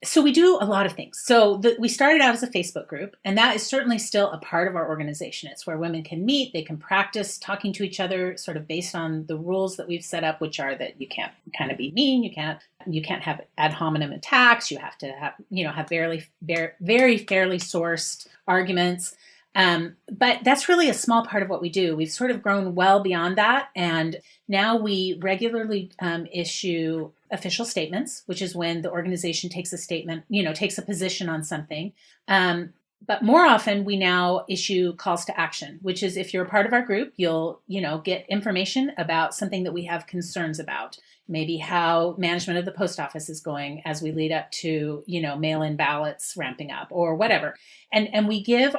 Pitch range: 165-205 Hz